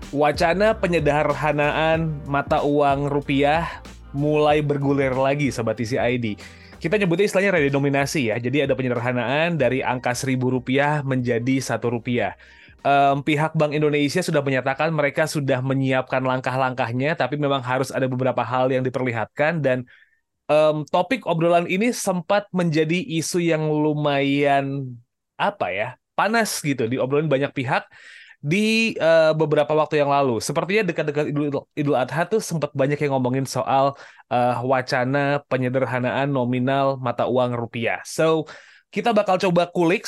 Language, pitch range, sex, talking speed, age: Indonesian, 130-155 Hz, male, 135 wpm, 20-39